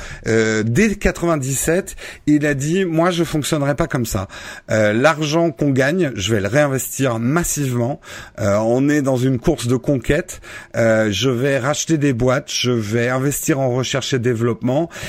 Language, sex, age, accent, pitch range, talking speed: French, male, 50-69, French, 115-150 Hz, 165 wpm